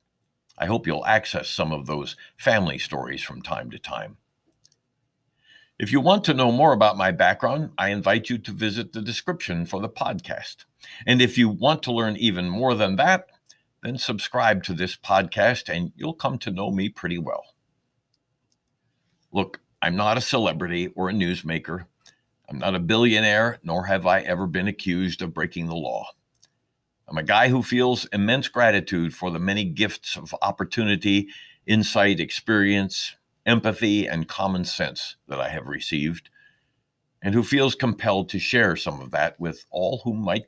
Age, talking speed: 60-79, 170 wpm